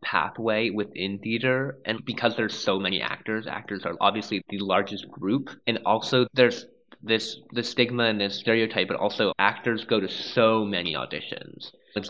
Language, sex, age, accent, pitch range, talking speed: English, male, 20-39, American, 105-120 Hz, 165 wpm